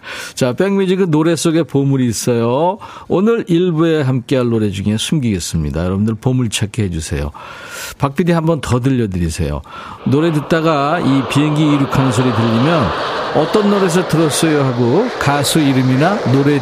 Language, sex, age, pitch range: Korean, male, 40-59, 115-165 Hz